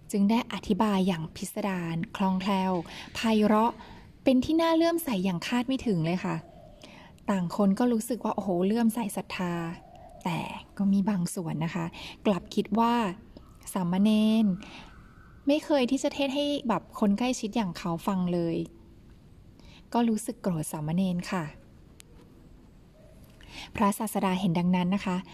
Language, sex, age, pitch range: Thai, female, 20-39, 180-225 Hz